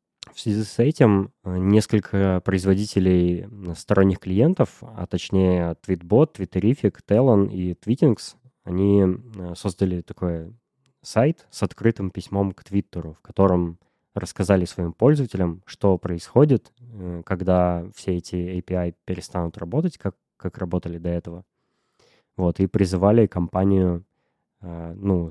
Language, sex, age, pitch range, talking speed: Russian, male, 20-39, 90-110 Hz, 110 wpm